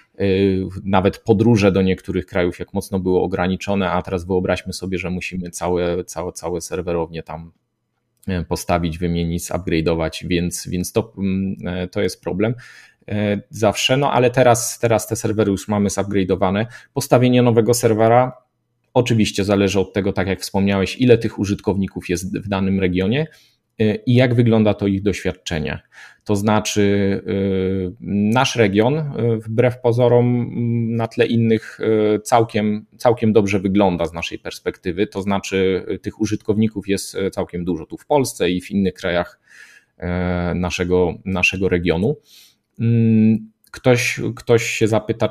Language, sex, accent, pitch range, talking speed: Polish, male, native, 95-115 Hz, 130 wpm